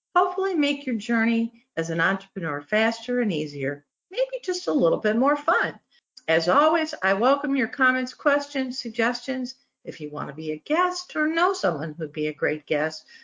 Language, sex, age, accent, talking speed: English, female, 50-69, American, 180 wpm